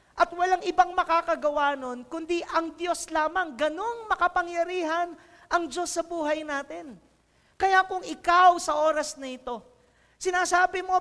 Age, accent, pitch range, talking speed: 40-59, Filipino, 235-335 Hz, 135 wpm